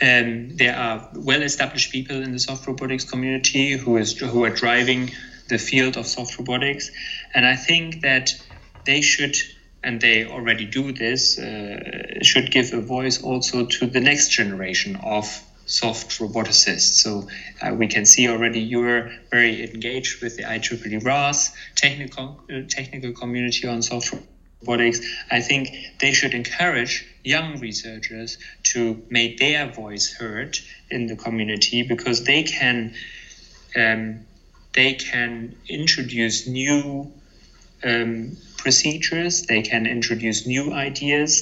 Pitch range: 115-135 Hz